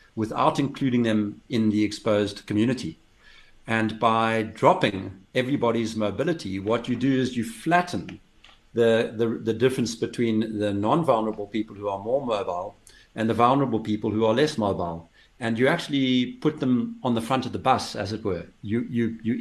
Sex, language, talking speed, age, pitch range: male, English, 170 wpm, 60-79, 105-125 Hz